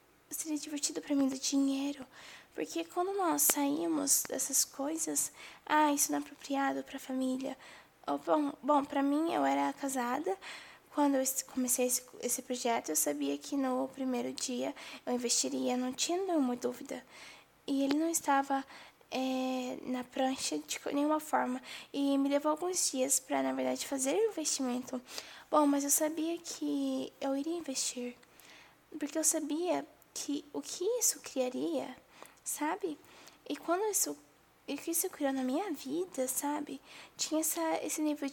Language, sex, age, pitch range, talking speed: Portuguese, female, 10-29, 260-315 Hz, 150 wpm